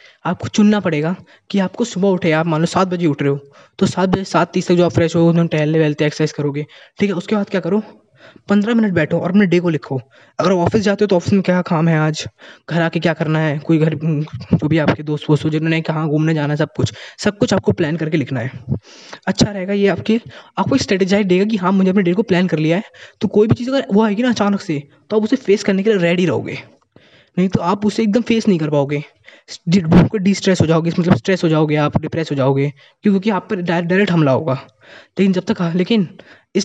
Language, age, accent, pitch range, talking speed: Hindi, 20-39, native, 150-195 Hz, 245 wpm